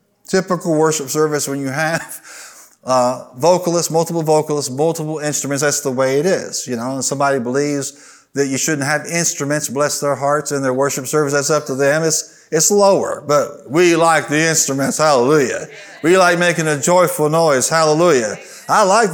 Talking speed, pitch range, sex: 175 wpm, 145-180 Hz, male